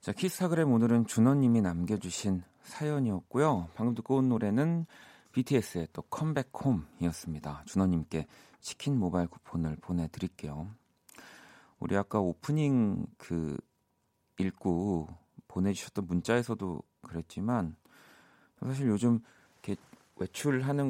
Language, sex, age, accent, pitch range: Korean, male, 40-59, native, 90-130 Hz